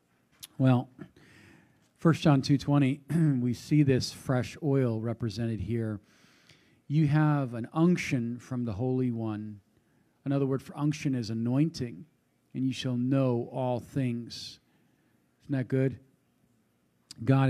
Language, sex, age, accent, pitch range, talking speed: English, male, 40-59, American, 115-140 Hz, 120 wpm